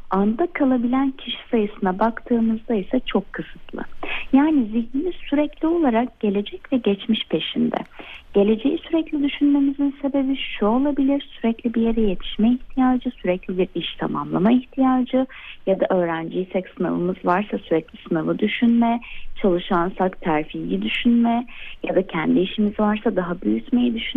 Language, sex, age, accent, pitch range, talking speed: Turkish, female, 30-49, native, 195-270 Hz, 125 wpm